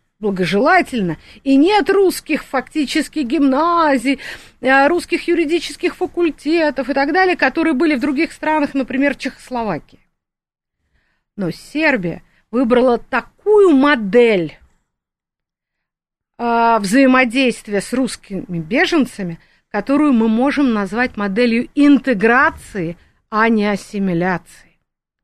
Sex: female